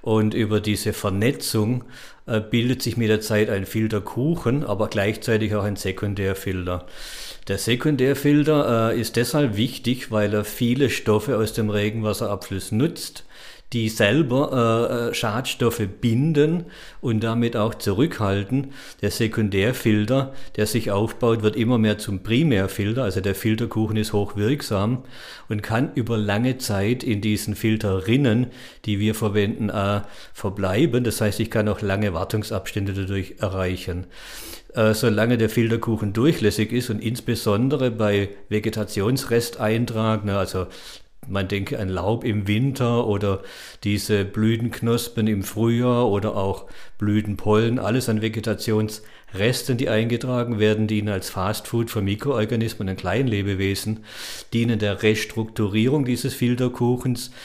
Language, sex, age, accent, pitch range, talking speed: German, male, 50-69, German, 105-120 Hz, 125 wpm